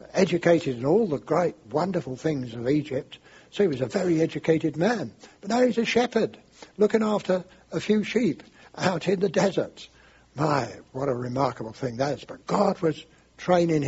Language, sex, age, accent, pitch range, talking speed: English, male, 60-79, British, 130-170 Hz, 175 wpm